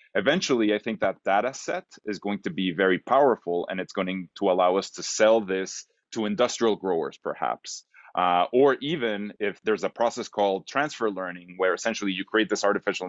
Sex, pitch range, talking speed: male, 95-110 Hz, 190 wpm